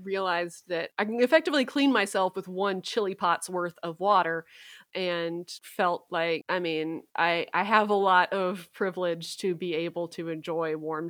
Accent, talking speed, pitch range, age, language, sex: American, 175 wpm, 175-205 Hz, 30-49, English, female